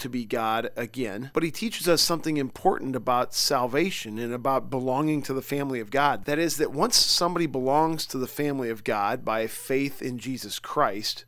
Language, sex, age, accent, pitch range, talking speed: English, male, 40-59, American, 130-155 Hz, 190 wpm